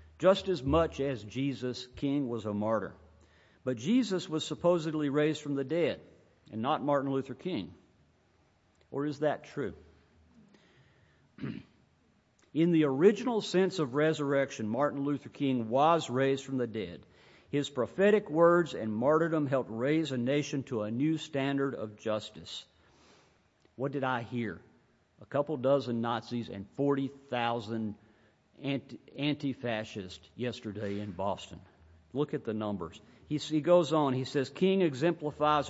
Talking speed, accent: 135 wpm, American